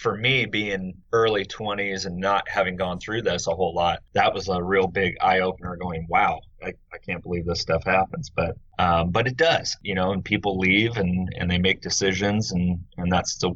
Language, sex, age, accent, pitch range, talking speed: English, male, 30-49, American, 90-100 Hz, 215 wpm